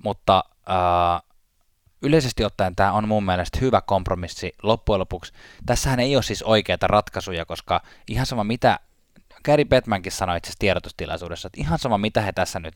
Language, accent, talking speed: Finnish, native, 165 wpm